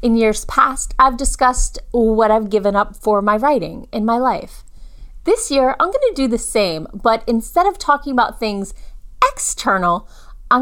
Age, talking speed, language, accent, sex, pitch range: 30-49, 175 wpm, English, American, female, 220-295 Hz